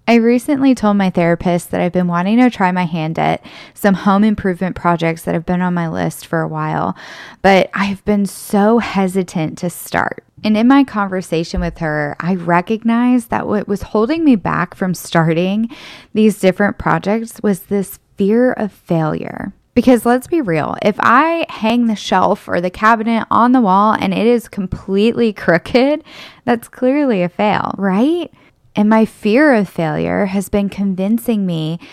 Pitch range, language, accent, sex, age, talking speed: 185-235 Hz, English, American, female, 10-29, 175 wpm